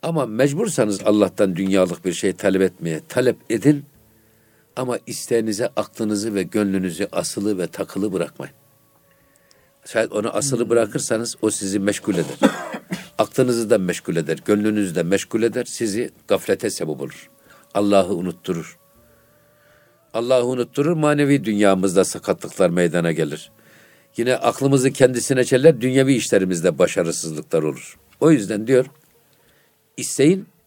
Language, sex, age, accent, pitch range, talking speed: Turkish, male, 60-79, native, 100-140 Hz, 115 wpm